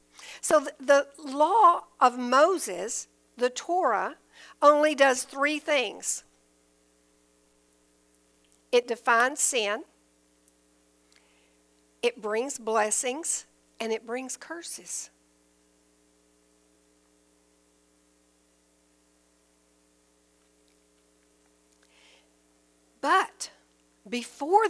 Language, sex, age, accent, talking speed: English, female, 60-79, American, 60 wpm